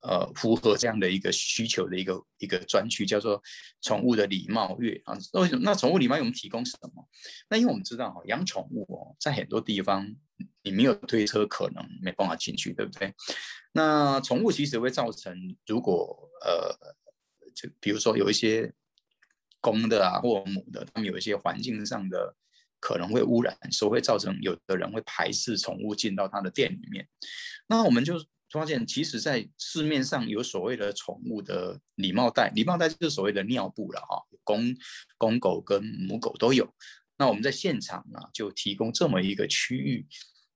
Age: 20-39